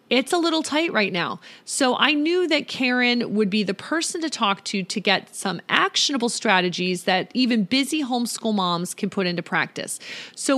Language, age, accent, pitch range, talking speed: English, 30-49, American, 200-265 Hz, 185 wpm